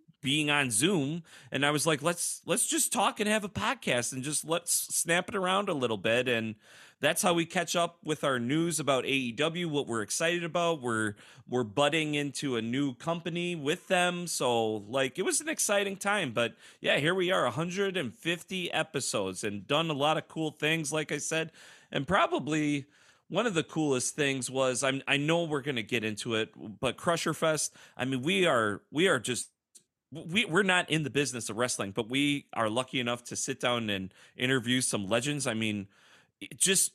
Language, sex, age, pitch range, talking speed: English, male, 30-49, 125-170 Hz, 195 wpm